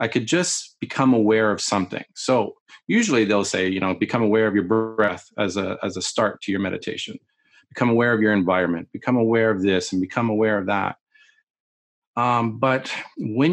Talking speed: 190 wpm